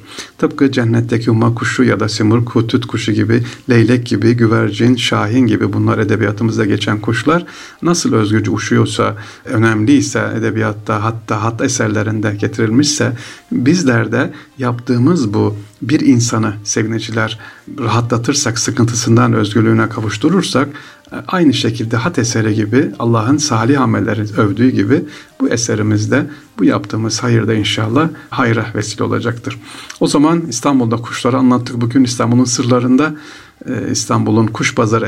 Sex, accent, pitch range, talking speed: male, native, 110-125 Hz, 115 wpm